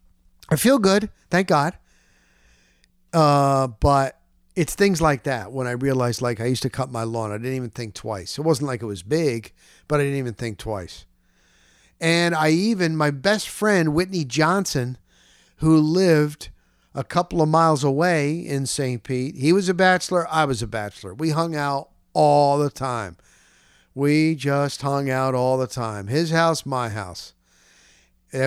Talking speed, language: 175 wpm, English